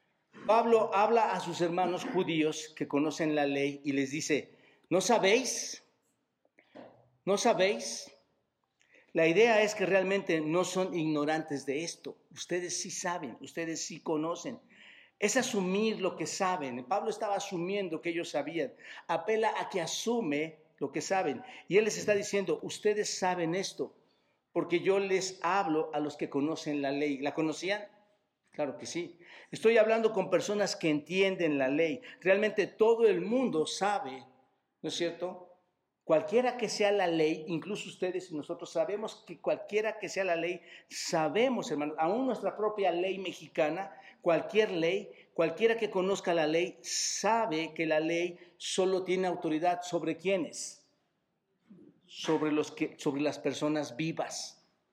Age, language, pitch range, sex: 50-69, Spanish, 160-200 Hz, male